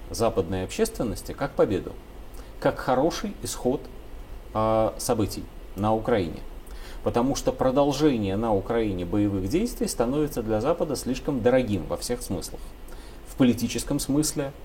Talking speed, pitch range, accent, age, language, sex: 120 wpm, 100-135 Hz, native, 30-49, Russian, male